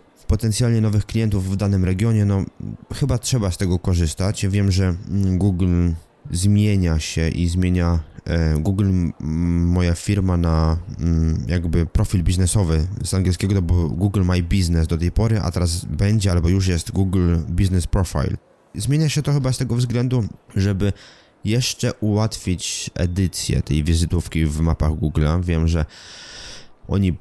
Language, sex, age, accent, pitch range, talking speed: Polish, male, 20-39, native, 85-100 Hz, 150 wpm